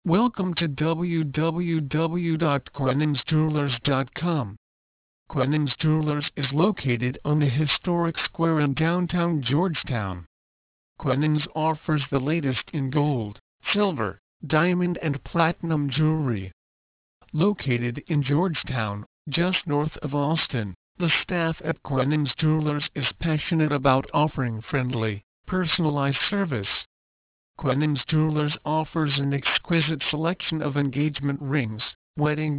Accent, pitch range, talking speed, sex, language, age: American, 130-165 Hz, 100 wpm, male, English, 50-69